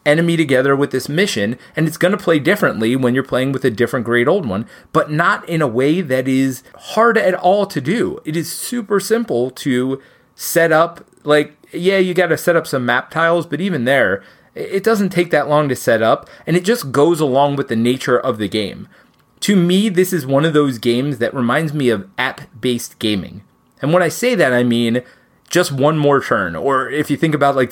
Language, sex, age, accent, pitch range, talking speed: English, male, 30-49, American, 130-180 Hz, 220 wpm